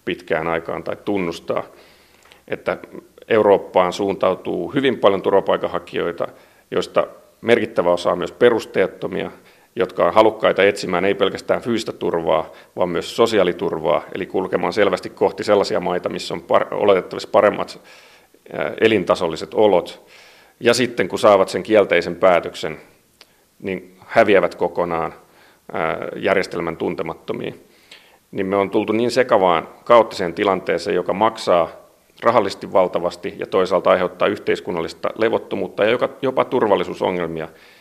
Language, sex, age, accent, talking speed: Finnish, male, 40-59, native, 110 wpm